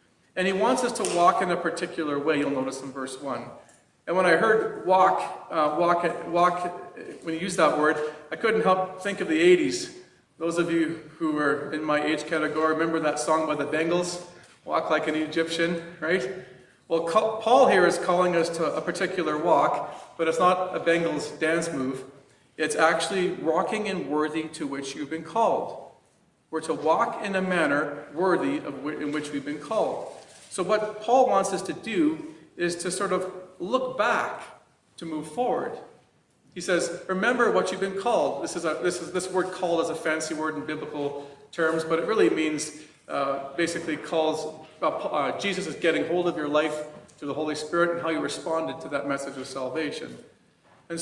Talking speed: 195 wpm